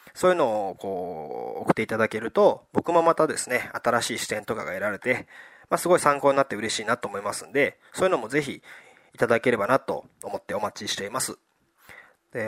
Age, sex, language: 20-39, male, Japanese